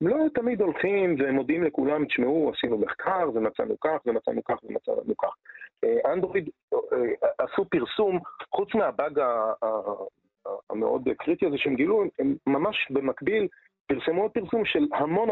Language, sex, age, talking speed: Hebrew, male, 40-59, 130 wpm